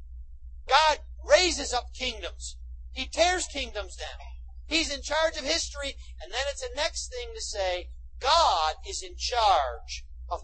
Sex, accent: male, American